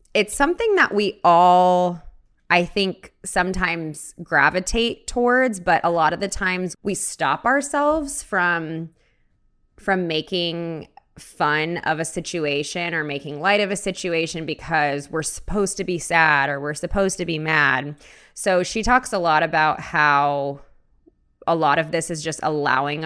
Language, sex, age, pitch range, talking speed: English, female, 20-39, 150-185 Hz, 150 wpm